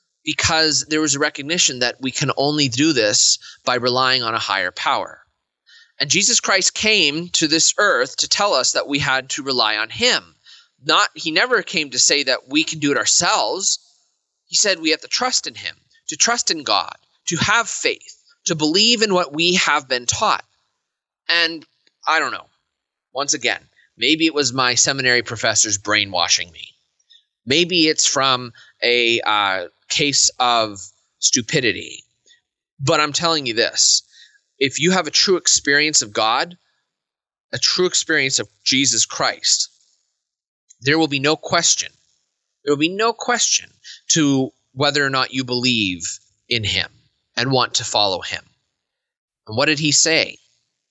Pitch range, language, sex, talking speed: 125-175 Hz, English, male, 165 wpm